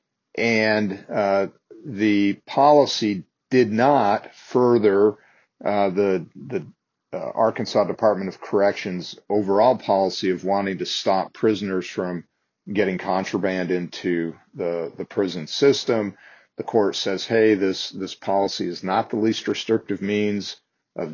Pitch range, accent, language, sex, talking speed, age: 95-110 Hz, American, English, male, 125 wpm, 40-59